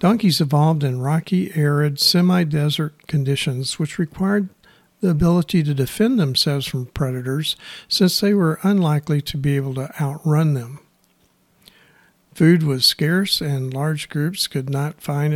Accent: American